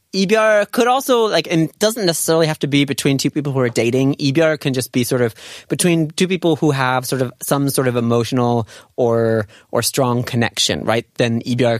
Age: 30-49